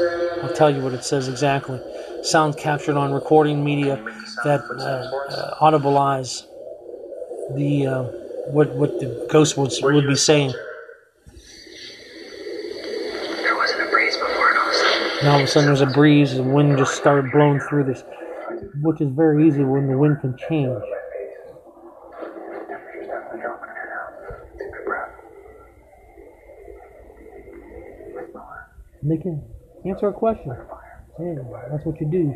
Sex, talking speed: male, 120 wpm